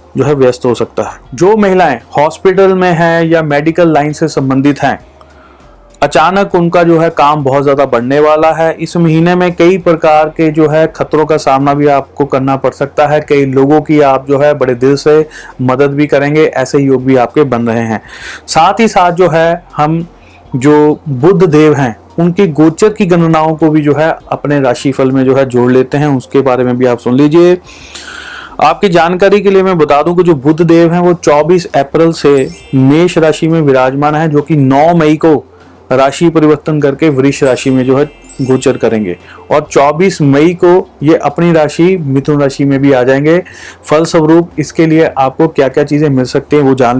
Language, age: Hindi, 30-49